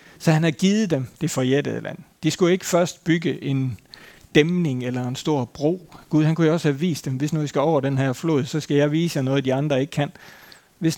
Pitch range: 135-160 Hz